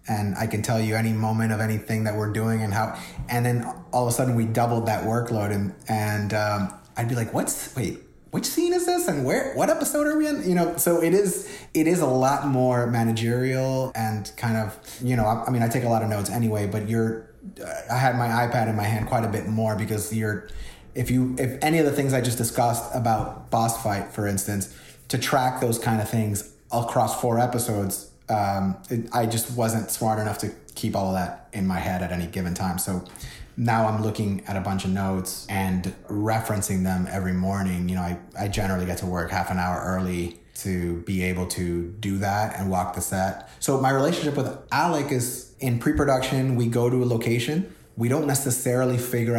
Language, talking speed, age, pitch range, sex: English, 220 wpm, 30-49, 100-125 Hz, male